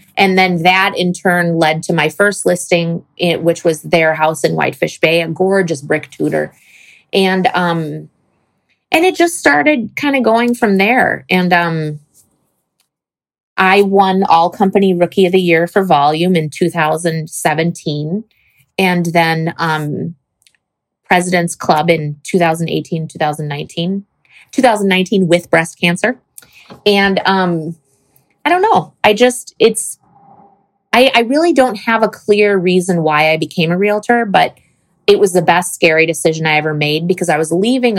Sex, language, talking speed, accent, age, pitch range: female, English, 145 wpm, American, 30-49, 155-195 Hz